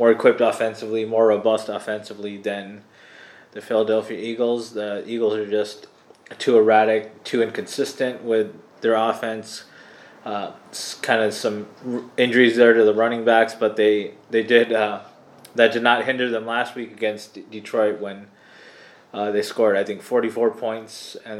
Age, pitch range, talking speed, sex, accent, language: 20-39, 105-115 Hz, 160 wpm, male, American, English